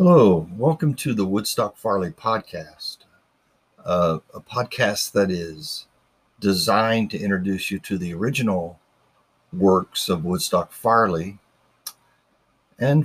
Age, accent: 50-69, American